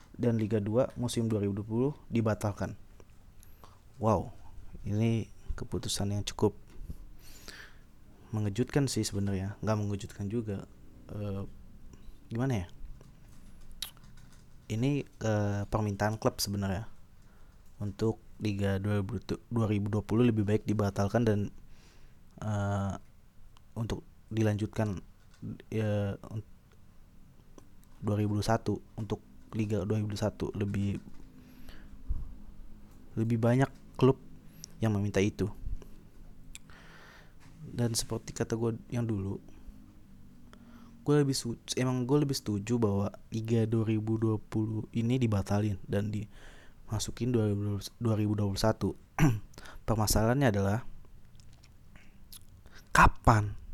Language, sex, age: Indonesian, male, 20-39